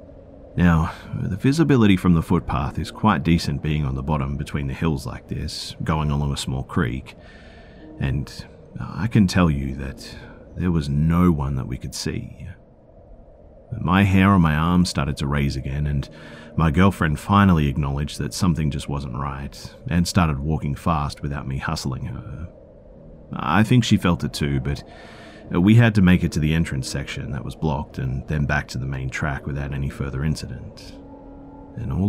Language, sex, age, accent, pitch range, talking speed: English, male, 40-59, Australian, 70-90 Hz, 180 wpm